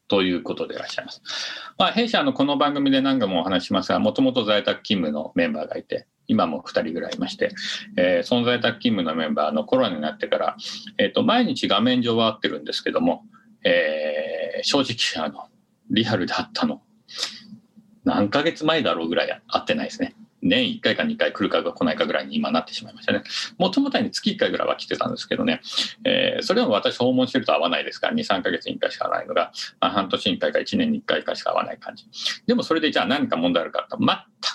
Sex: male